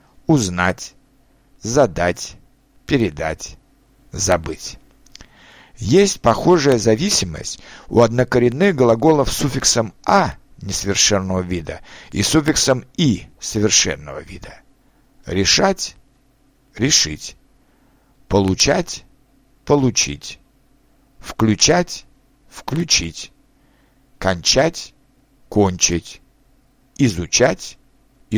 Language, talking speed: Russian, 60 wpm